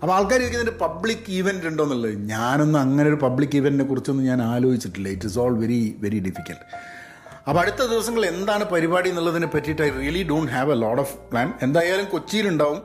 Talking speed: 180 wpm